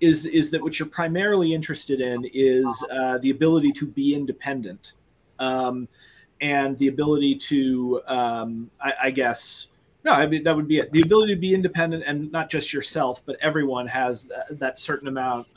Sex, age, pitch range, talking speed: male, 30-49, 125-165 Hz, 180 wpm